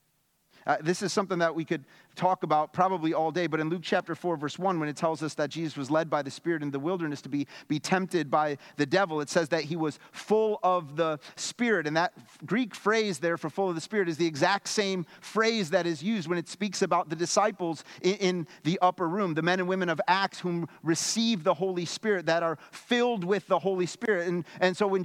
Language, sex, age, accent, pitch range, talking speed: English, male, 30-49, American, 150-205 Hz, 240 wpm